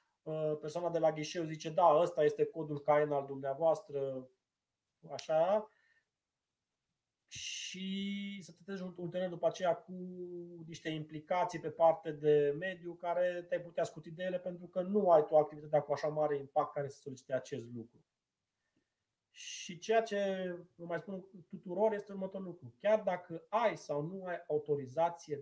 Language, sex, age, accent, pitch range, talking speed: Romanian, male, 30-49, native, 145-180 Hz, 150 wpm